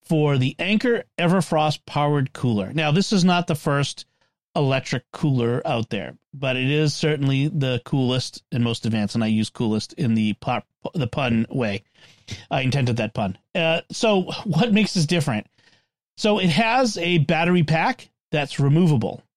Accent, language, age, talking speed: American, English, 40-59, 165 wpm